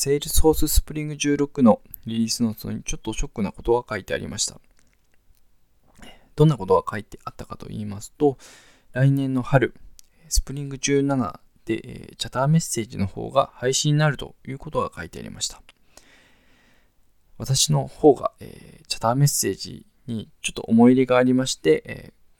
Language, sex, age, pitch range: Japanese, male, 20-39, 115-155 Hz